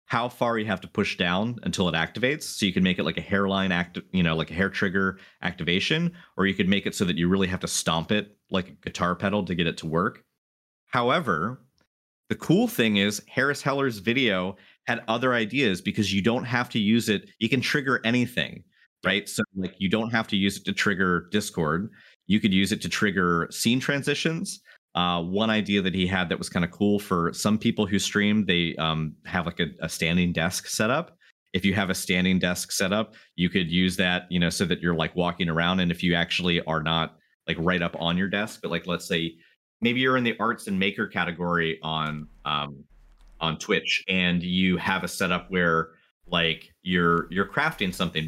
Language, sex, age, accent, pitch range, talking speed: English, male, 30-49, American, 85-105 Hz, 215 wpm